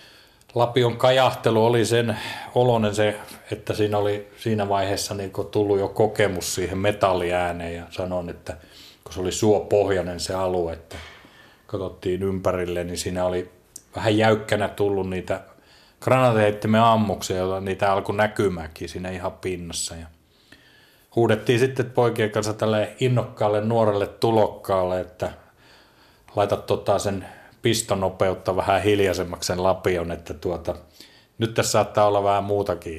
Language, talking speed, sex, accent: Finnish, 130 wpm, male, native